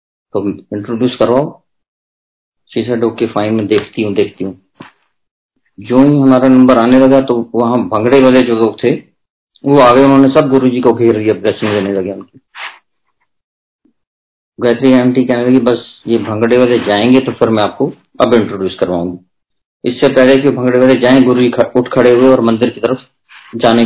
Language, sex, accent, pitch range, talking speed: Hindi, male, native, 110-130 Hz, 165 wpm